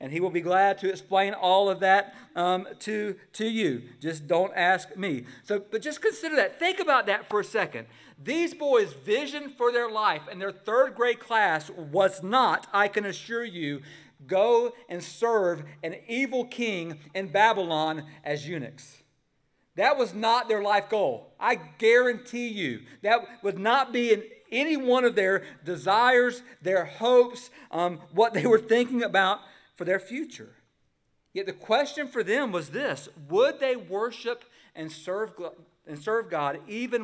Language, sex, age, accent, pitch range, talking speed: English, male, 50-69, American, 145-225 Hz, 165 wpm